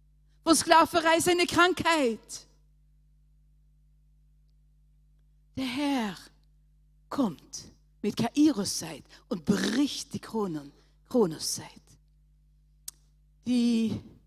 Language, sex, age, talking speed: English, female, 50-69, 75 wpm